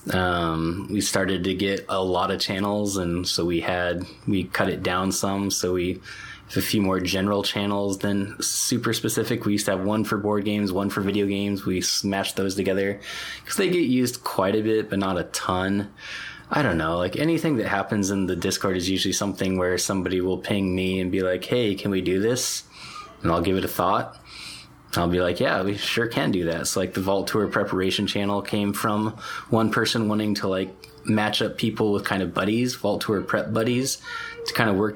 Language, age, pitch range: English, 20-39, 95-110 Hz